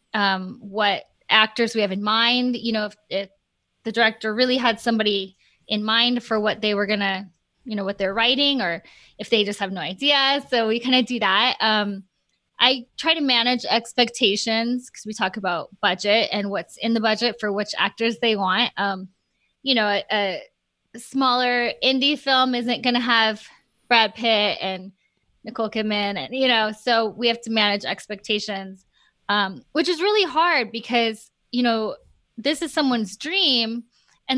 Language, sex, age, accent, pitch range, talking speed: English, female, 20-39, American, 210-255 Hz, 180 wpm